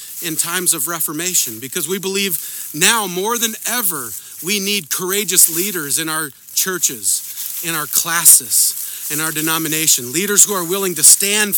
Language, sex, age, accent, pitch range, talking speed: English, male, 40-59, American, 160-210 Hz, 155 wpm